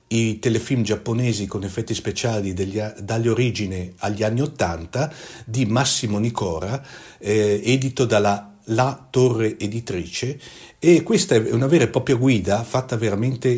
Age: 50-69